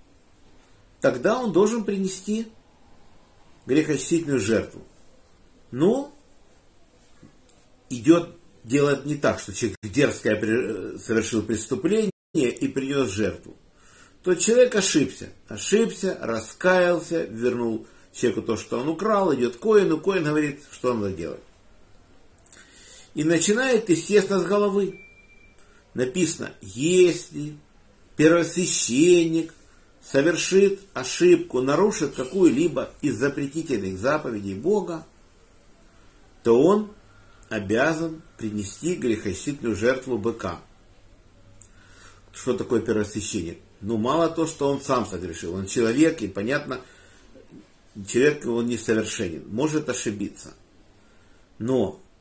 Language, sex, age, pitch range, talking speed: Russian, male, 50-69, 105-165 Hz, 95 wpm